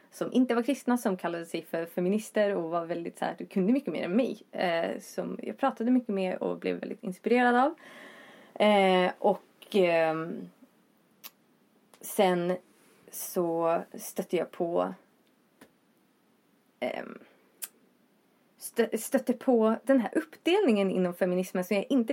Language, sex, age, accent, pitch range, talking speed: Swedish, female, 20-39, native, 180-245 Hz, 135 wpm